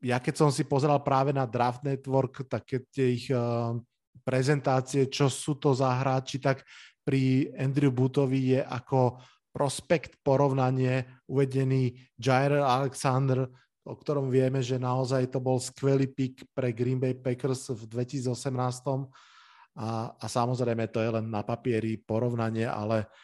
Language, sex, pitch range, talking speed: Slovak, male, 115-140 Hz, 140 wpm